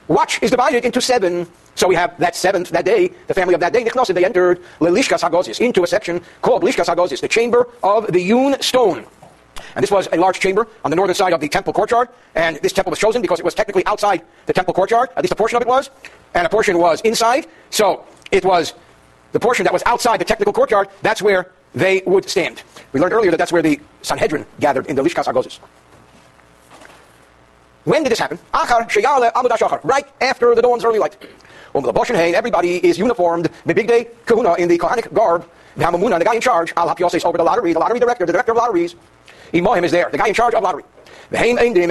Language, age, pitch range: English, 50-69, 175-245 Hz